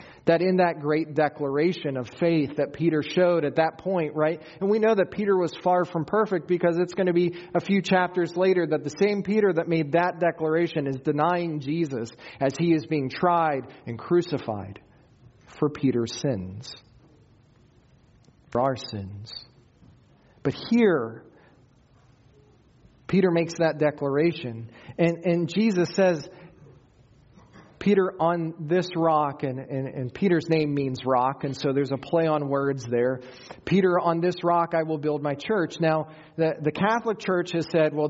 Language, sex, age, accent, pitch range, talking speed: English, male, 40-59, American, 140-185 Hz, 160 wpm